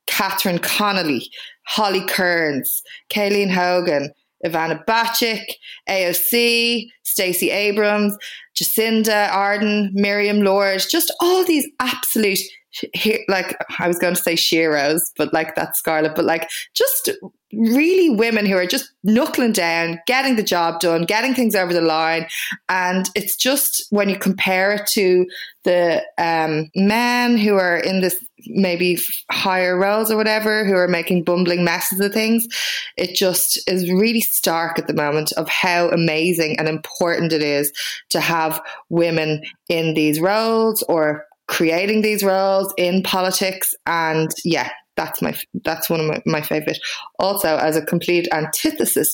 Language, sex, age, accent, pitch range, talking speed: English, female, 20-39, Irish, 165-215 Hz, 145 wpm